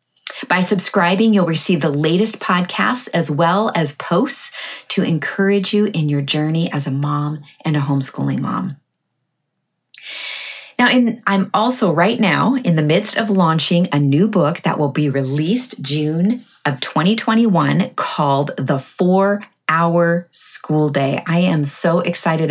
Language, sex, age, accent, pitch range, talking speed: English, female, 30-49, American, 150-195 Hz, 145 wpm